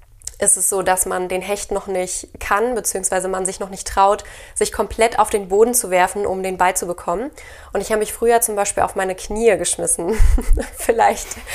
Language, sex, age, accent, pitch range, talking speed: German, female, 20-39, German, 180-215 Hz, 205 wpm